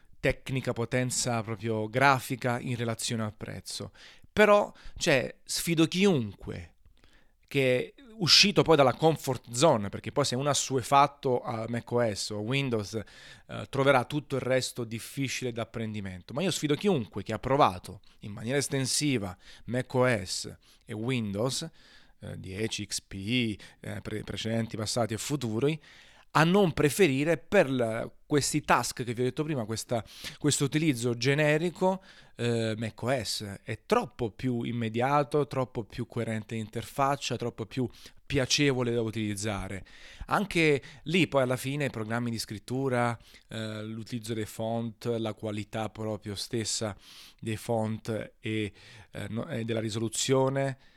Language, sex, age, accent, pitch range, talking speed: Italian, male, 30-49, native, 110-140 Hz, 135 wpm